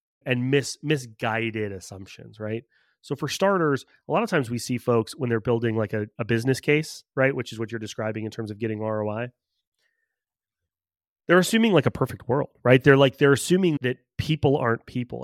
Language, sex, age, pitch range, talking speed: English, male, 30-49, 115-145 Hz, 190 wpm